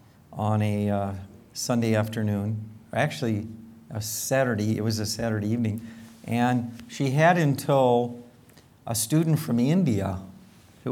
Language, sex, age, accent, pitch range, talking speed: English, male, 50-69, American, 110-125 Hz, 125 wpm